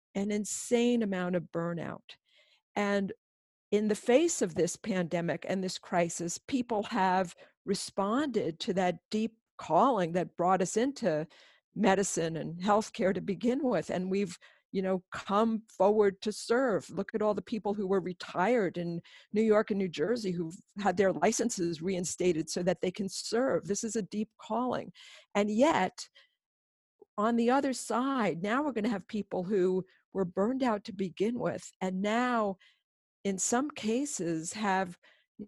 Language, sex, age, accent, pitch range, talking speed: English, female, 50-69, American, 185-225 Hz, 160 wpm